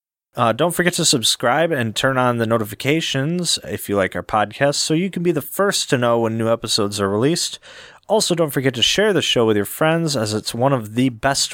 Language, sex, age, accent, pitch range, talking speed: English, male, 30-49, American, 110-150 Hz, 230 wpm